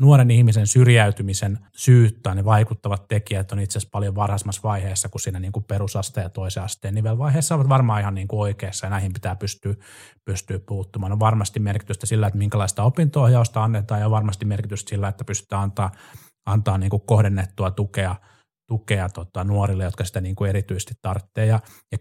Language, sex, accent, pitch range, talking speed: Finnish, male, native, 100-115 Hz, 175 wpm